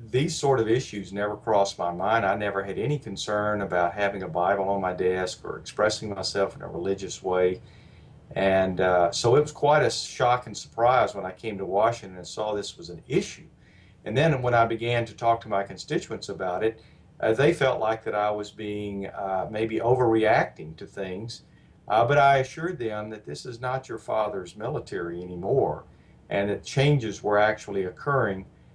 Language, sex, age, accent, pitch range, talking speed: English, male, 50-69, American, 100-125 Hz, 190 wpm